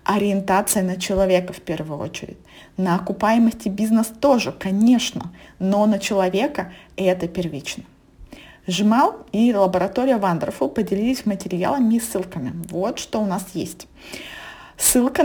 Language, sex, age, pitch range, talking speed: Russian, female, 20-39, 190-250 Hz, 120 wpm